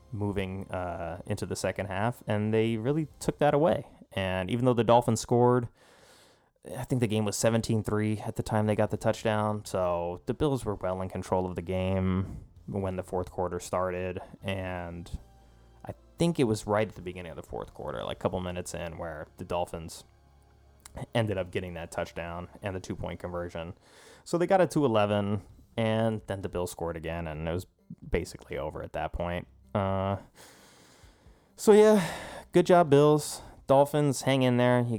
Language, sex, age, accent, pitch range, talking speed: English, male, 20-39, American, 85-110 Hz, 180 wpm